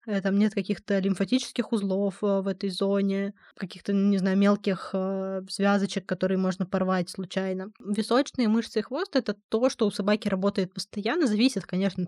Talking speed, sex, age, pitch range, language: 155 wpm, female, 20-39, 195-225 Hz, Russian